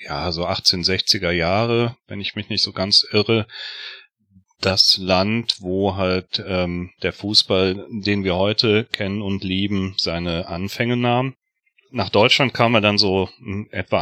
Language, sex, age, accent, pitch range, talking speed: German, male, 40-59, German, 95-115 Hz, 145 wpm